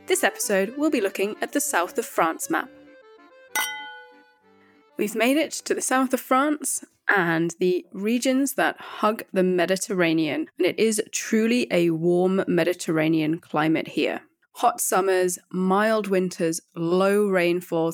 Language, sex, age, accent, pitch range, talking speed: English, female, 20-39, British, 175-255 Hz, 135 wpm